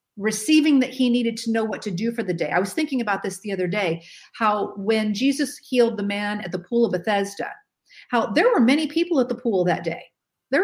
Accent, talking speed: American, 235 wpm